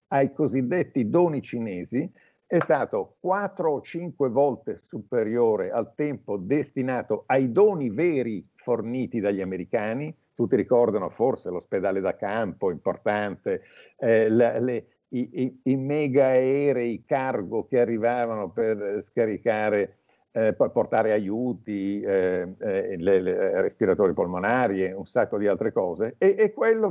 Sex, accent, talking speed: male, native, 125 wpm